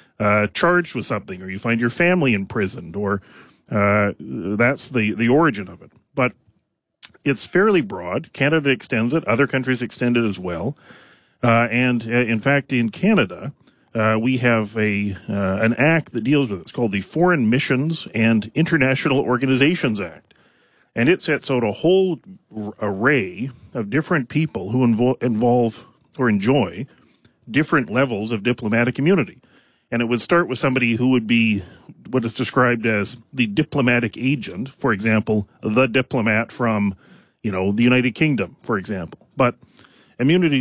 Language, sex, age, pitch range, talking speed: English, male, 40-59, 110-135 Hz, 160 wpm